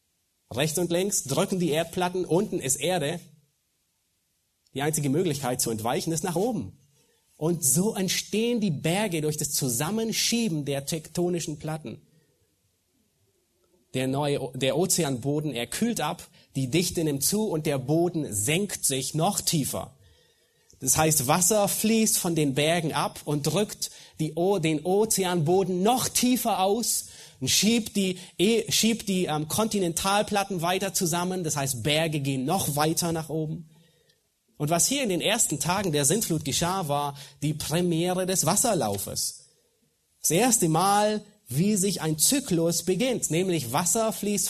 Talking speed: 140 wpm